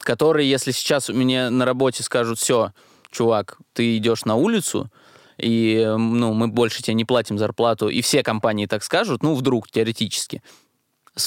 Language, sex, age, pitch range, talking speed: Russian, male, 20-39, 115-130 Hz, 165 wpm